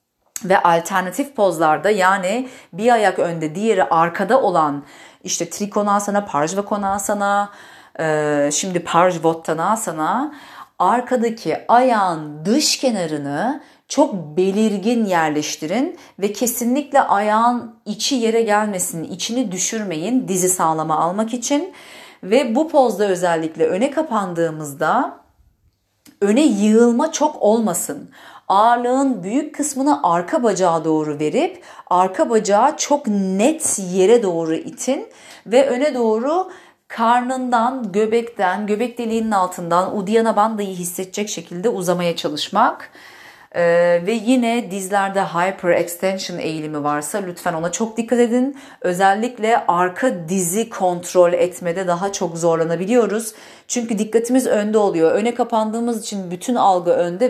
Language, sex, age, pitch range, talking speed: Italian, female, 40-59, 175-240 Hz, 110 wpm